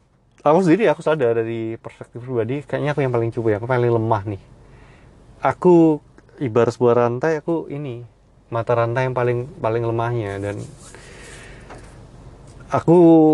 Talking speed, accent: 135 wpm, native